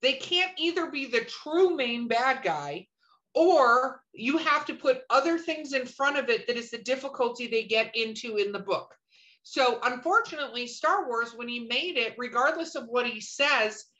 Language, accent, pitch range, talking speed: English, American, 235-315 Hz, 185 wpm